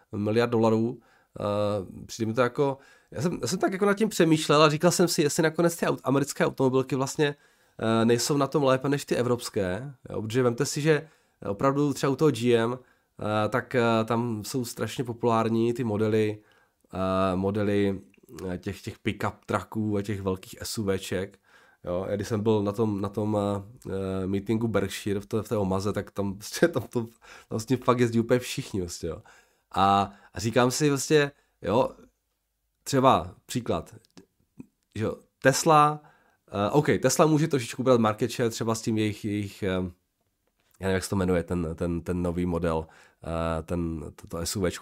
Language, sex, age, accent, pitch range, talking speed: Czech, male, 20-39, native, 100-140 Hz, 160 wpm